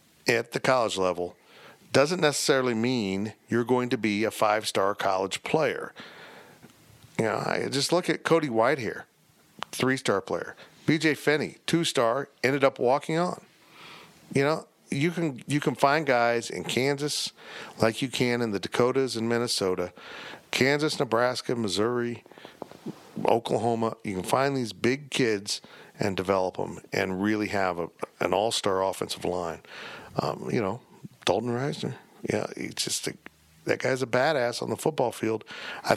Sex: male